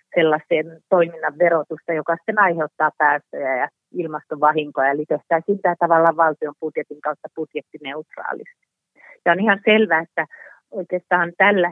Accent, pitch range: native, 155-175 Hz